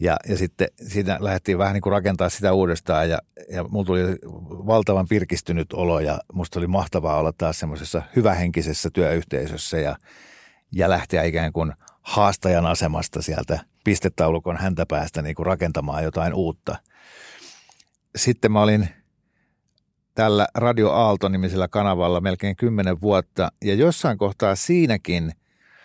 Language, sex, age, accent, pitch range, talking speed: Finnish, male, 50-69, native, 85-100 Hz, 130 wpm